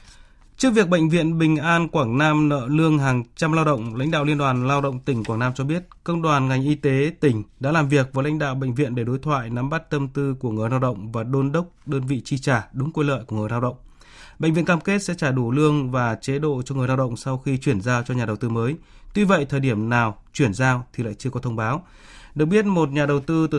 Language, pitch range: Vietnamese, 120-150 Hz